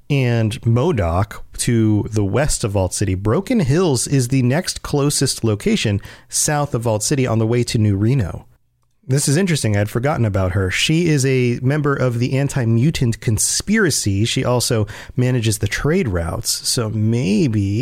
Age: 30-49